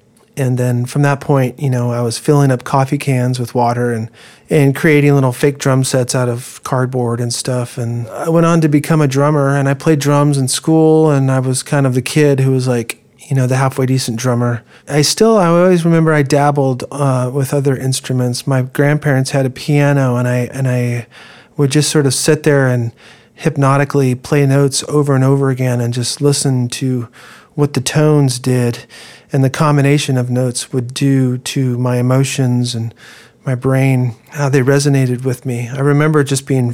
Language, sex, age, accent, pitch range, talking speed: English, male, 40-59, American, 125-145 Hz, 200 wpm